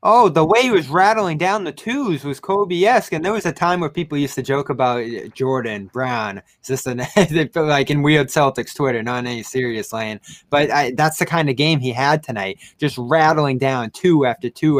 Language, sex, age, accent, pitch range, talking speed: English, male, 20-39, American, 125-165 Hz, 210 wpm